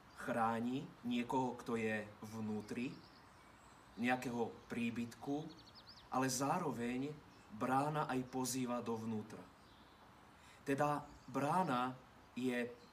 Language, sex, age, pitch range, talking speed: Slovak, male, 30-49, 115-135 Hz, 75 wpm